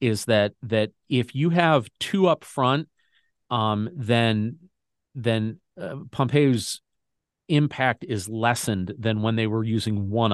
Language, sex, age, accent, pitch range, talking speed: English, male, 40-59, American, 110-130 Hz, 135 wpm